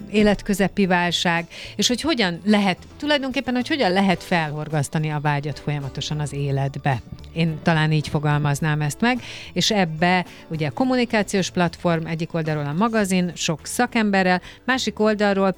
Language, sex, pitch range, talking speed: Hungarian, female, 155-190 Hz, 140 wpm